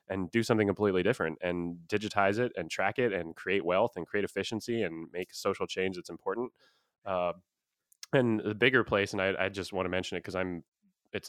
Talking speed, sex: 205 wpm, male